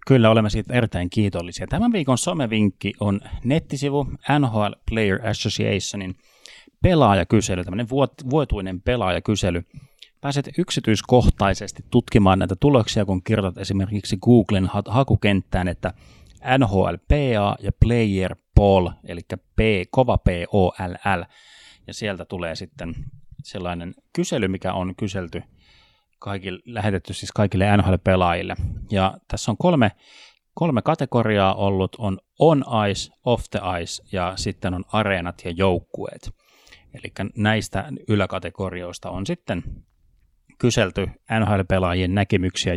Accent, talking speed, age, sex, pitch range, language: native, 105 wpm, 30-49, male, 95-120 Hz, Finnish